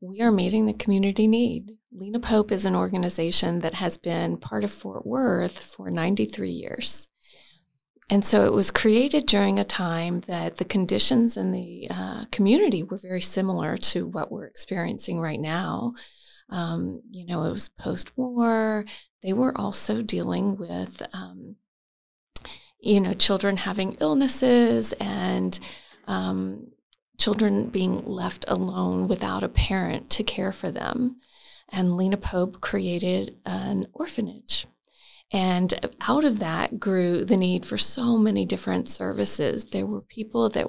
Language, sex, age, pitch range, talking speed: English, female, 30-49, 165-220 Hz, 145 wpm